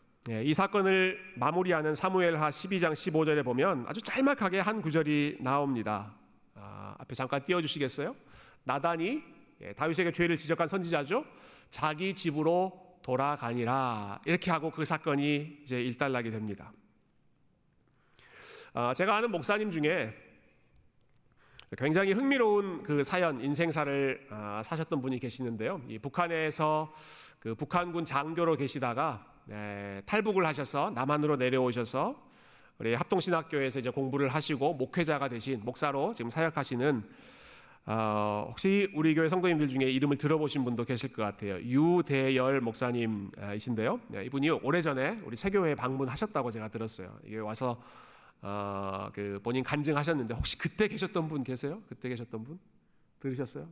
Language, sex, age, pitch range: Korean, male, 40-59, 120-165 Hz